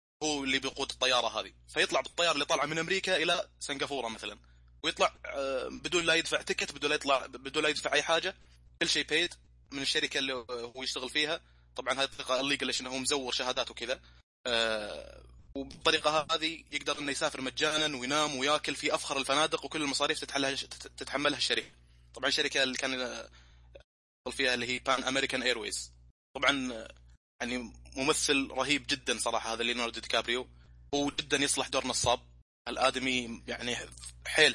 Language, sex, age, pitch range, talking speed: Arabic, male, 20-39, 105-145 Hz, 155 wpm